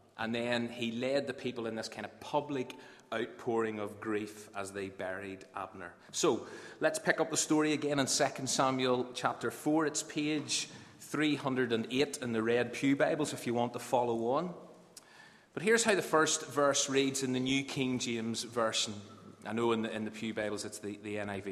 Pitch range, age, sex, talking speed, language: 110-140 Hz, 30-49, male, 190 wpm, English